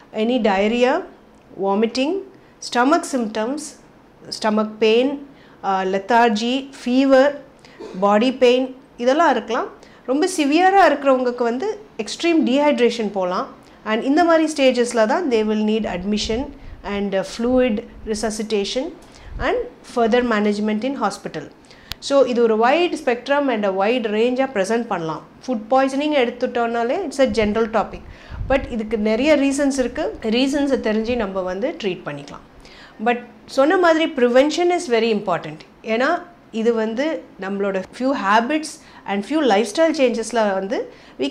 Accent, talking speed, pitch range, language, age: Indian, 120 wpm, 215-275 Hz, English, 30-49